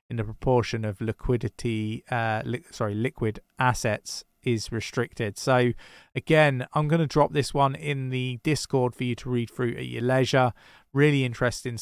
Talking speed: 170 wpm